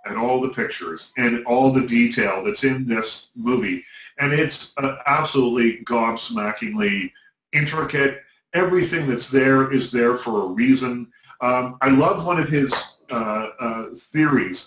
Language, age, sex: English, 40-59, male